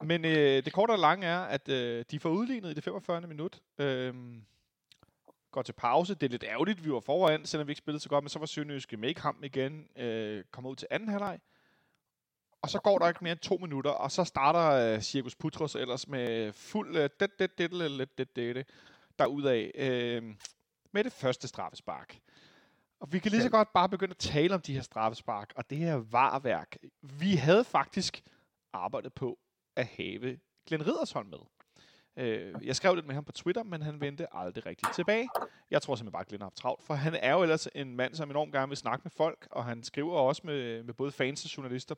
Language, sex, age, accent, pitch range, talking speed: Danish, male, 30-49, native, 125-170 Hz, 215 wpm